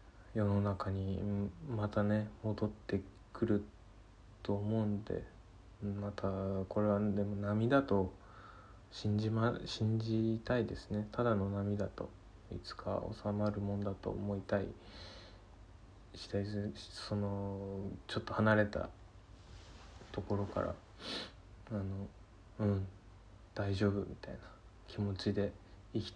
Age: 20-39